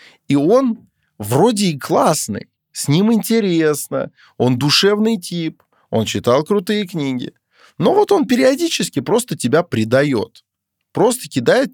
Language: Russian